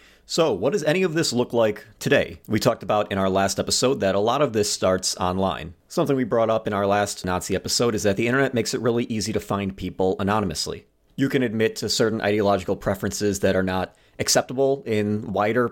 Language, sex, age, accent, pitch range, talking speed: English, male, 30-49, American, 100-125 Hz, 220 wpm